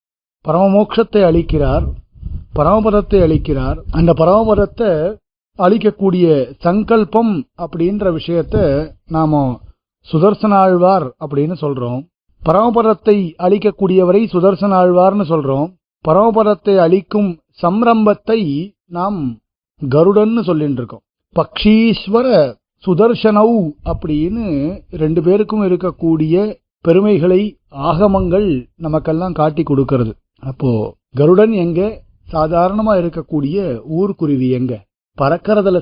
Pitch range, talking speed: 150-205 Hz, 75 wpm